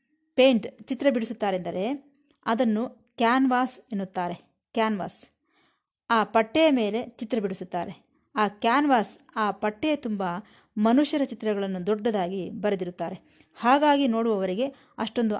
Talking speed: 95 wpm